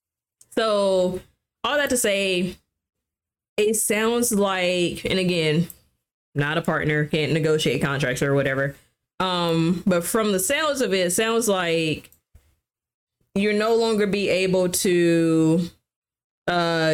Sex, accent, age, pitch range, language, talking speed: female, American, 20-39, 150-195 Hz, English, 125 wpm